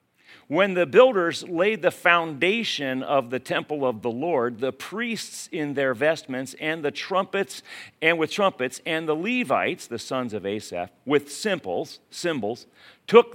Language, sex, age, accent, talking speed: English, male, 40-59, American, 155 wpm